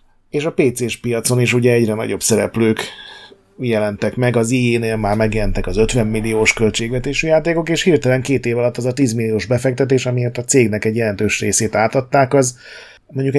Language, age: Hungarian, 30-49